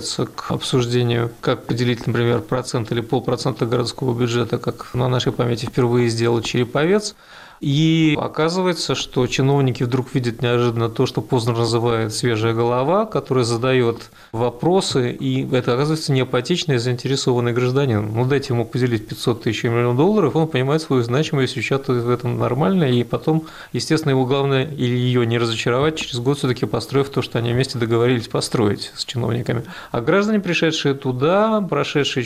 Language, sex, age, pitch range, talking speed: Russian, male, 30-49, 120-145 Hz, 150 wpm